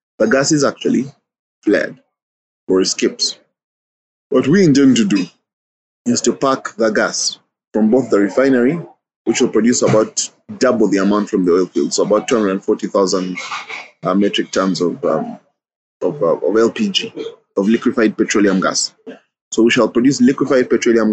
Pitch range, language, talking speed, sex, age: 110-155 Hz, English, 155 wpm, male, 30-49